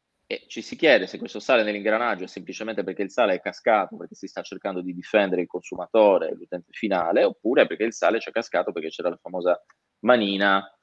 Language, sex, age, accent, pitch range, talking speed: Italian, male, 20-39, native, 95-125 Hz, 205 wpm